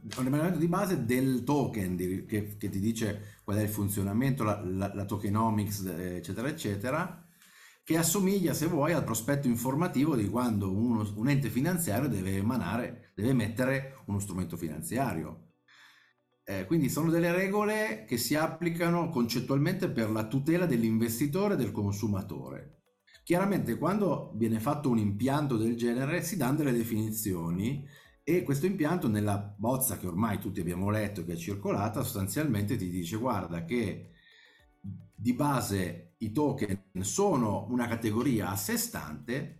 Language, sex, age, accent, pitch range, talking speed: Italian, male, 50-69, native, 100-150 Hz, 145 wpm